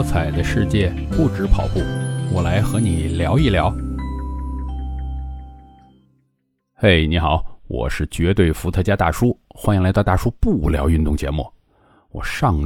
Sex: male